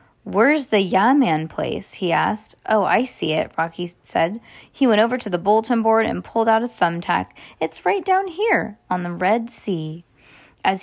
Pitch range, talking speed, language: 175-220 Hz, 185 wpm, English